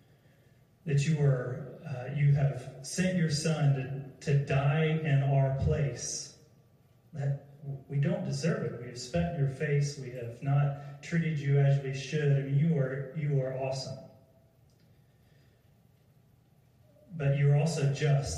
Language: English